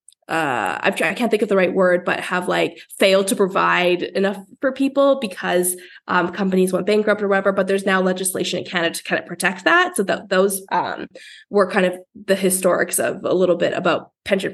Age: 20-39